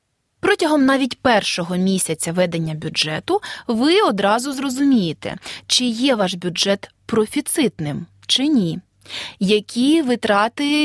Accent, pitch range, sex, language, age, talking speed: native, 185-260 Hz, female, Ukrainian, 30-49, 100 wpm